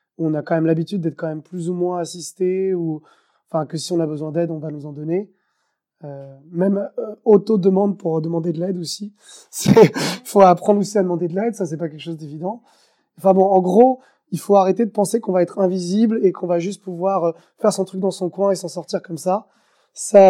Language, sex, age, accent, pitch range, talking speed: French, male, 20-39, French, 170-200 Hz, 235 wpm